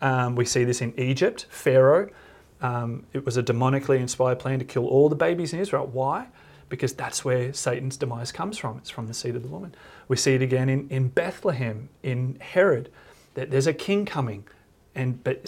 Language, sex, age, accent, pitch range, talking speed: English, male, 30-49, Australian, 120-140 Hz, 200 wpm